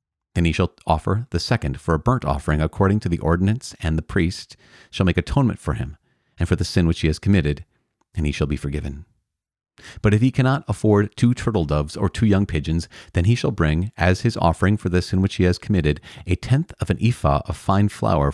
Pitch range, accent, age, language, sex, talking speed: 80-100 Hz, American, 40-59, English, male, 225 wpm